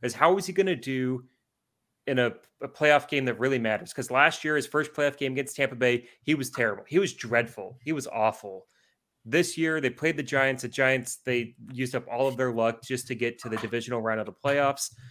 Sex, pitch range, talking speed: male, 115-130 Hz, 235 wpm